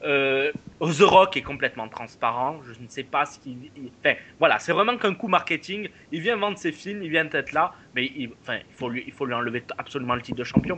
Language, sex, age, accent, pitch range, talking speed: French, male, 20-39, French, 145-200 Hz, 250 wpm